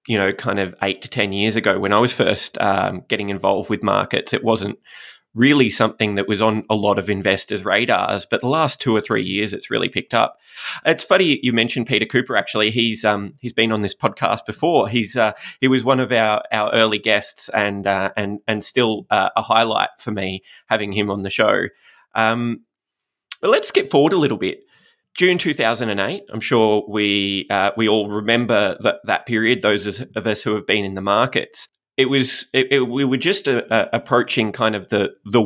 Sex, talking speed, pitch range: male, 210 wpm, 105-130 Hz